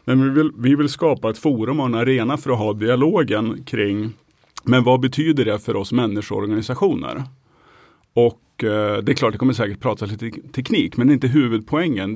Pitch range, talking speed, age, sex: 110-130 Hz, 190 wpm, 30-49, male